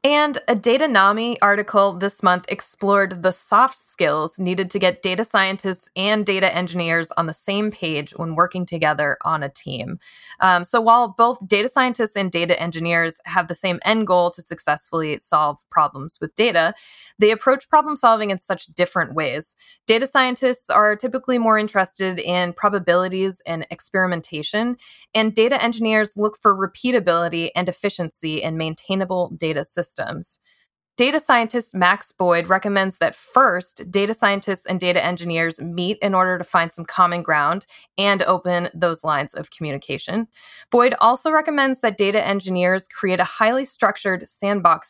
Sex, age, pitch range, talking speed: female, 20-39, 170-220 Hz, 155 wpm